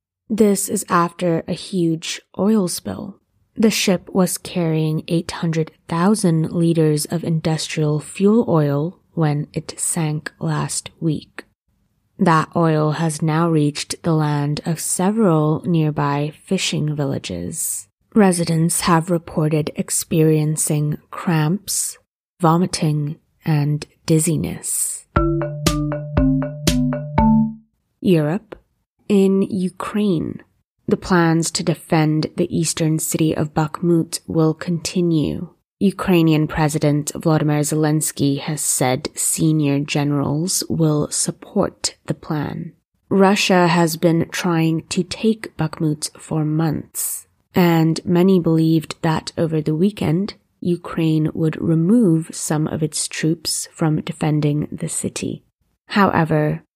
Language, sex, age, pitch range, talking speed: English, female, 20-39, 155-175 Hz, 100 wpm